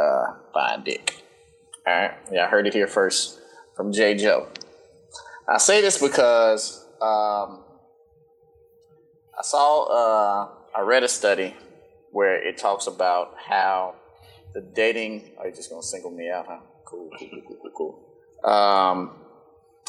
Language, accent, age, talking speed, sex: English, American, 30-49, 140 wpm, male